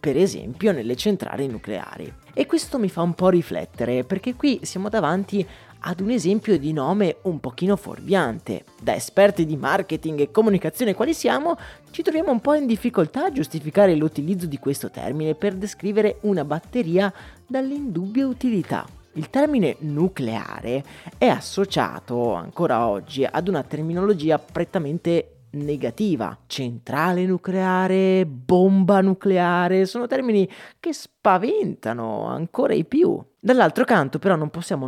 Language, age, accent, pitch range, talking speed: Italian, 30-49, native, 145-205 Hz, 135 wpm